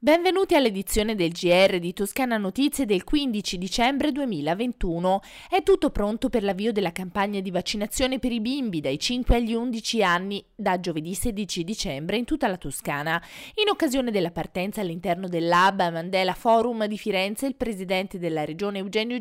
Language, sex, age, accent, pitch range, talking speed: Italian, female, 20-39, native, 180-235 Hz, 160 wpm